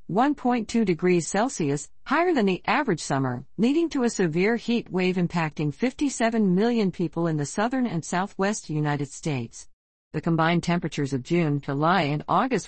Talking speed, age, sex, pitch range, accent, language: 150 wpm, 50-69, female, 145-195 Hz, American, English